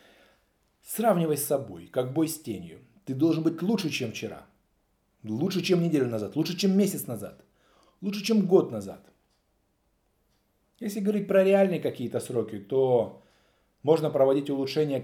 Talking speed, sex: 140 wpm, male